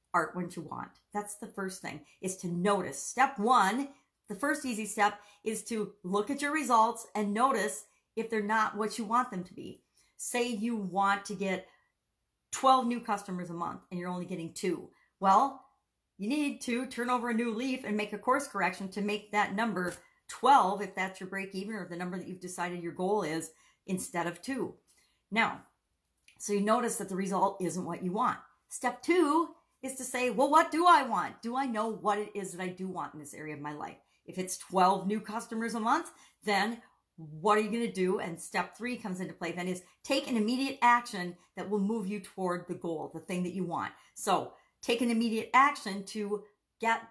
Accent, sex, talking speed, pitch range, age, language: American, female, 210 wpm, 180-235 Hz, 50-69, English